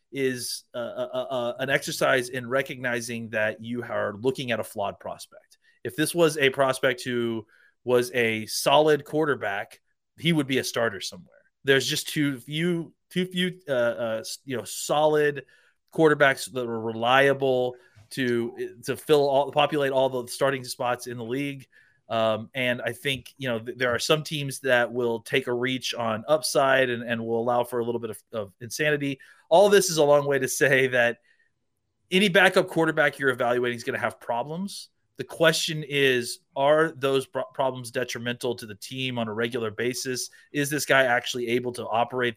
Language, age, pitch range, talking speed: English, 30-49, 120-150 Hz, 180 wpm